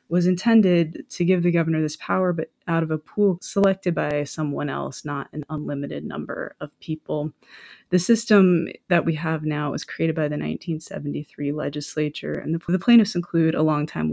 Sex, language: female, English